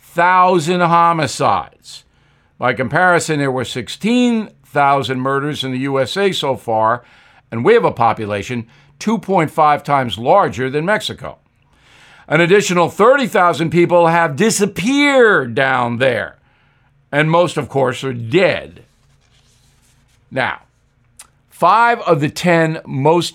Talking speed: 110 wpm